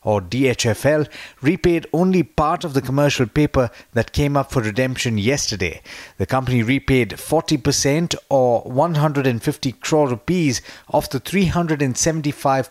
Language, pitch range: English, 120-150 Hz